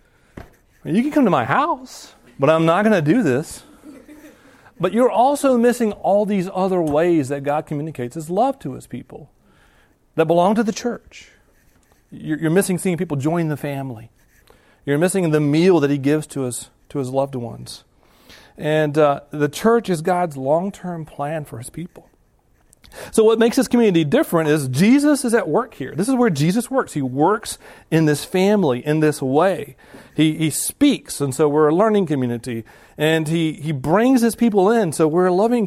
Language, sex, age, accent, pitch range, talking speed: English, male, 40-59, American, 140-210 Hz, 190 wpm